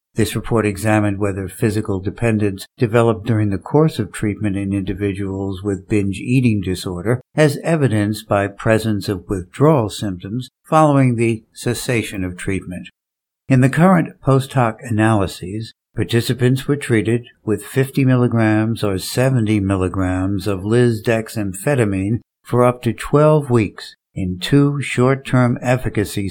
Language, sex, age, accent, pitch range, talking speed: English, male, 60-79, American, 105-130 Hz, 125 wpm